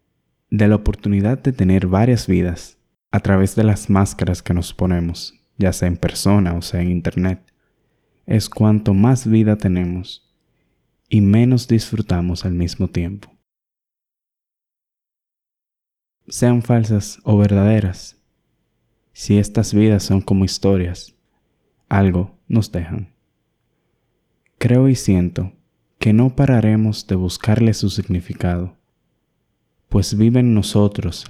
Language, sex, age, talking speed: Spanish, male, 20-39, 115 wpm